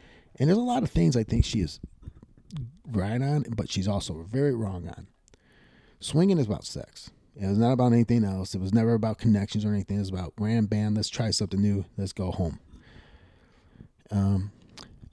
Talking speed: 185 wpm